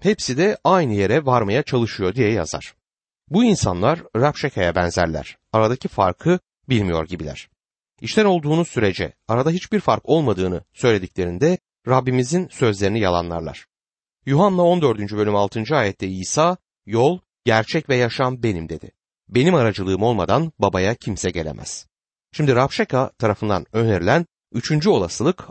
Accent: native